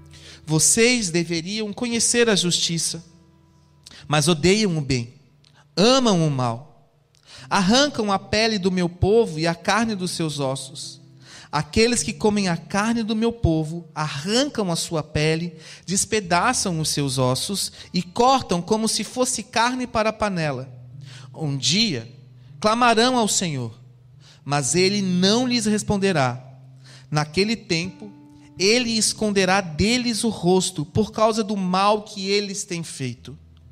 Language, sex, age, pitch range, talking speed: Portuguese, male, 40-59, 145-220 Hz, 130 wpm